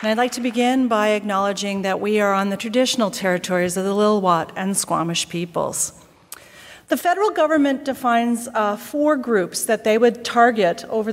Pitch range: 200-260 Hz